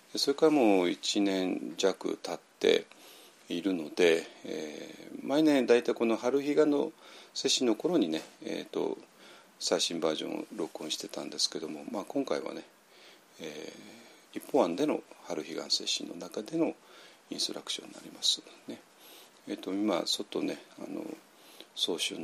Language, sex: Japanese, male